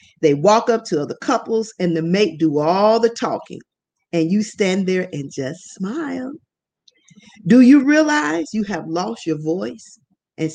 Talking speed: 165 wpm